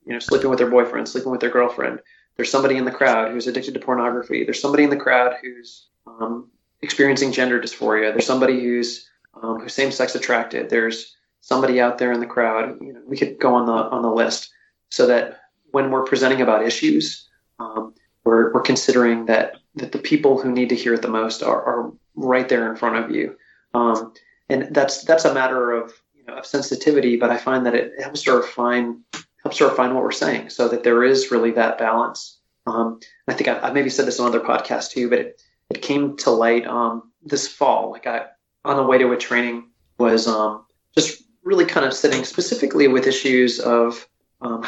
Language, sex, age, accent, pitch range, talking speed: English, male, 30-49, American, 115-135 Hz, 210 wpm